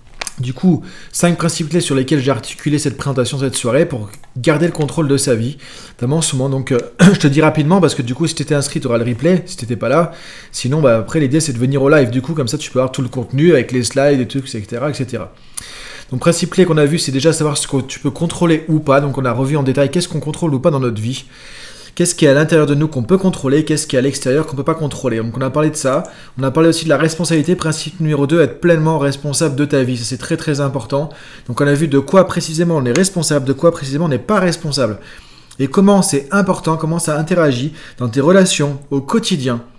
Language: French